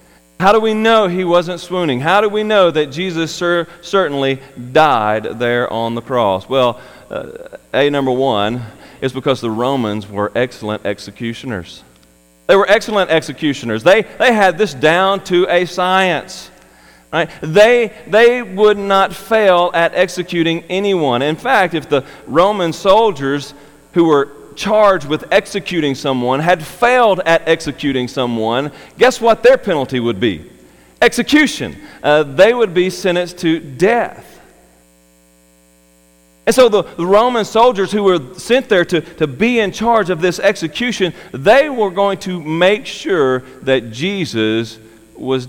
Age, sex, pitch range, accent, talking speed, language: 40-59, male, 120-190 Hz, American, 145 wpm, English